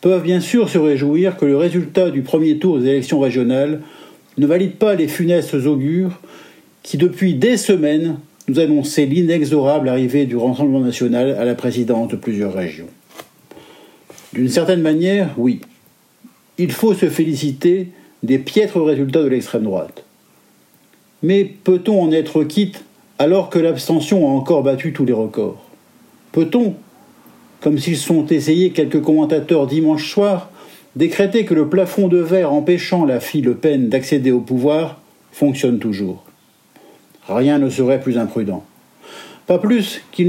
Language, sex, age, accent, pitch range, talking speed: French, male, 50-69, French, 140-180 Hz, 145 wpm